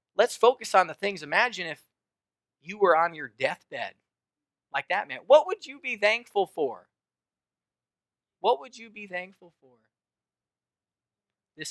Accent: American